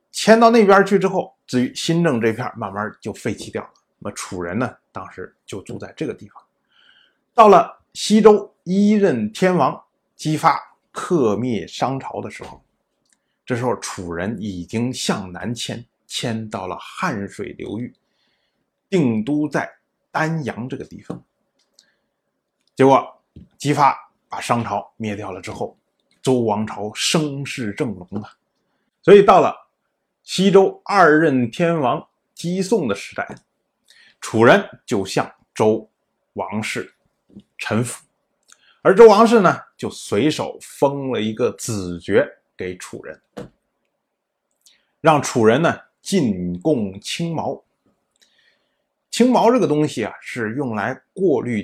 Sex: male